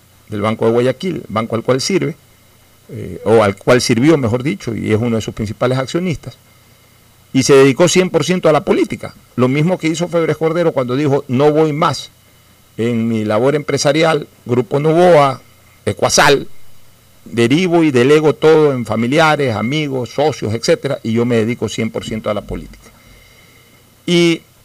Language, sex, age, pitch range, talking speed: Spanish, male, 50-69, 115-150 Hz, 160 wpm